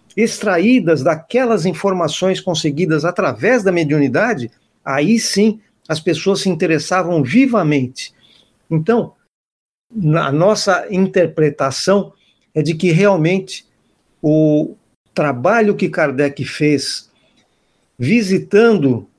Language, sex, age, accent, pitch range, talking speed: Portuguese, male, 50-69, Brazilian, 150-210 Hz, 90 wpm